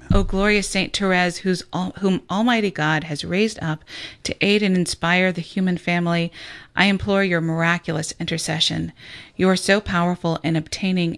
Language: English